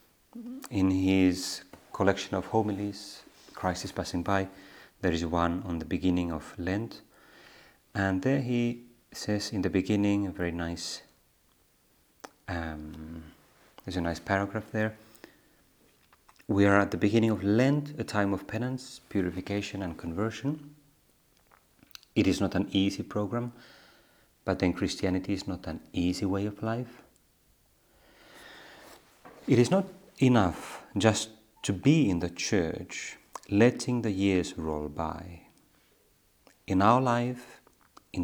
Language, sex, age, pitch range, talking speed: Finnish, male, 30-49, 90-120 Hz, 130 wpm